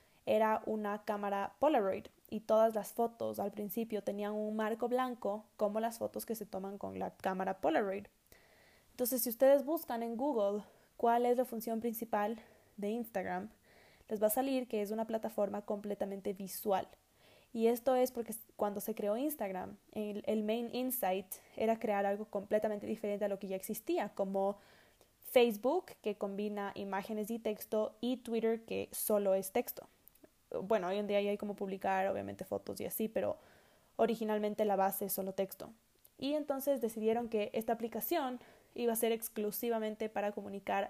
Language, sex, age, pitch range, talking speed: Spanish, female, 10-29, 205-235 Hz, 165 wpm